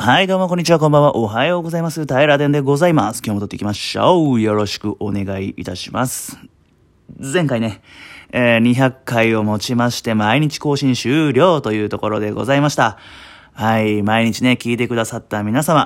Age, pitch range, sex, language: 30-49, 110-145 Hz, male, Japanese